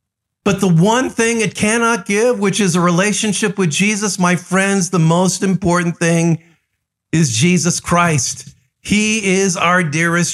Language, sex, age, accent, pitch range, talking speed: English, male, 50-69, American, 145-200 Hz, 150 wpm